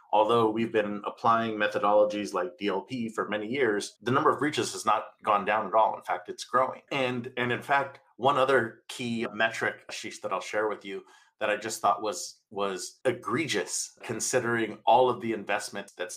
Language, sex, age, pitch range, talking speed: English, male, 40-59, 110-135 Hz, 190 wpm